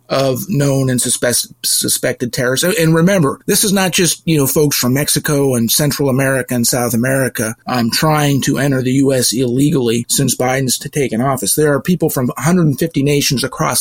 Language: English